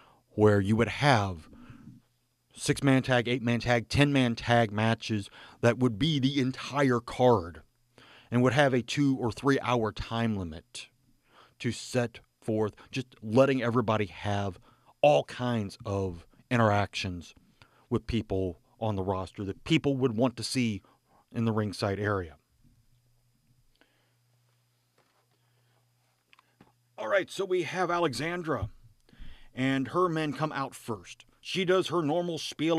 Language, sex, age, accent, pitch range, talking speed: English, male, 40-59, American, 115-140 Hz, 125 wpm